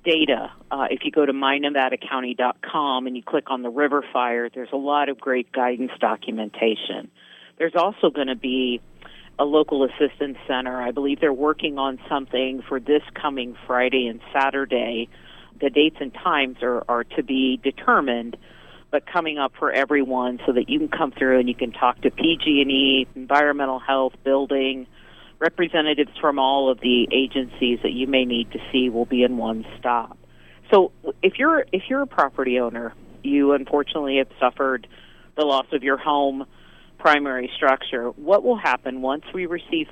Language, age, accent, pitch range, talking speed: English, 50-69, American, 125-150 Hz, 170 wpm